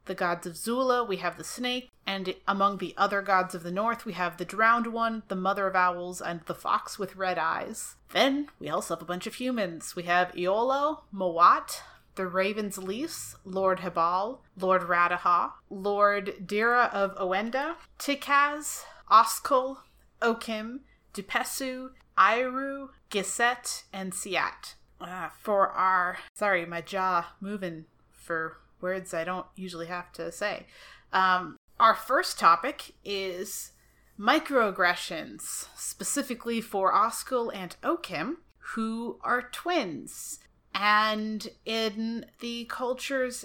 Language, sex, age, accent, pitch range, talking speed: English, female, 30-49, American, 185-235 Hz, 130 wpm